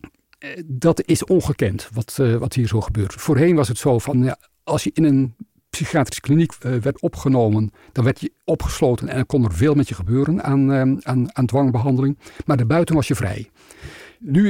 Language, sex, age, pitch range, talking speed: Dutch, male, 60-79, 115-145 Hz, 195 wpm